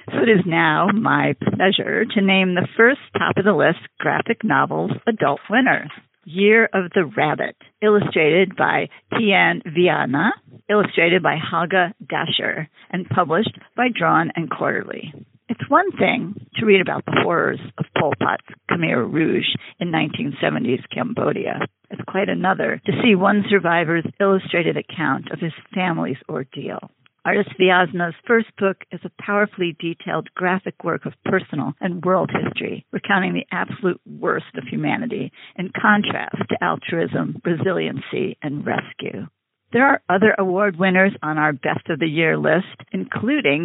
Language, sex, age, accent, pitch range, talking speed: English, female, 50-69, American, 170-210 Hz, 140 wpm